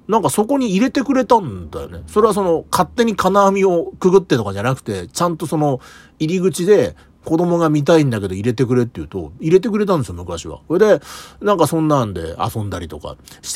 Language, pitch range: Japanese, 115-185 Hz